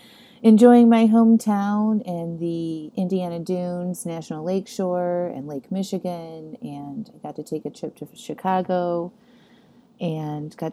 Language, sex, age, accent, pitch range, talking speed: English, female, 30-49, American, 160-215 Hz, 130 wpm